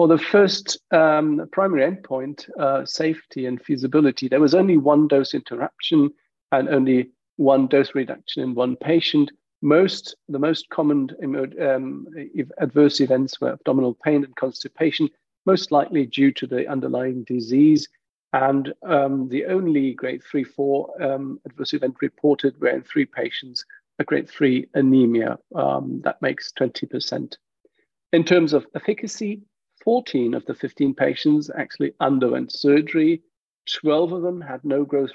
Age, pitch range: 50-69, 130-160 Hz